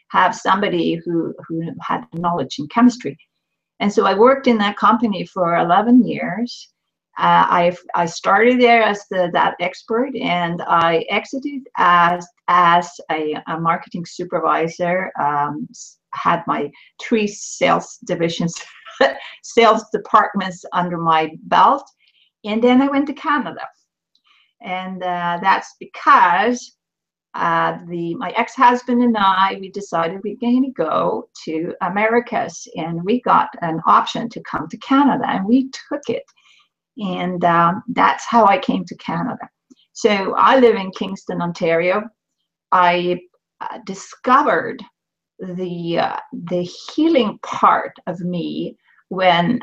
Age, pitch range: 50-69, 175-240 Hz